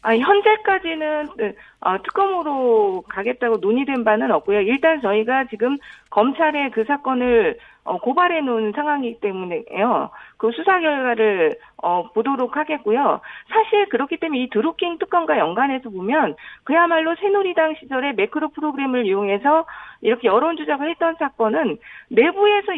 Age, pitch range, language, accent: 40-59, 235-350 Hz, Korean, native